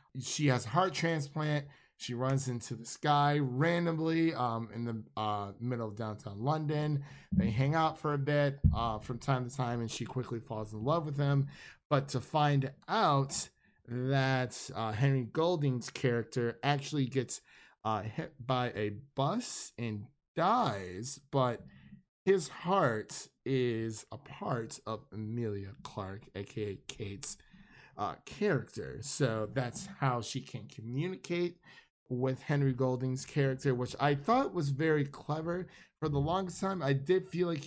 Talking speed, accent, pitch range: 150 wpm, American, 120-150 Hz